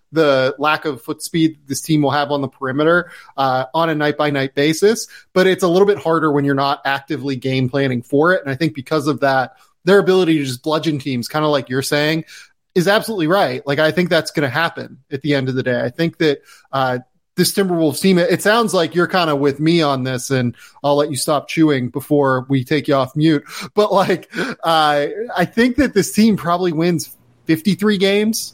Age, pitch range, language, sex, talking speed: 30-49, 140-165 Hz, English, male, 225 wpm